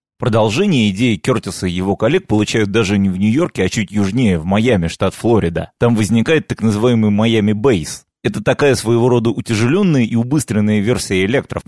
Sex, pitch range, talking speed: male, 100-125 Hz, 170 wpm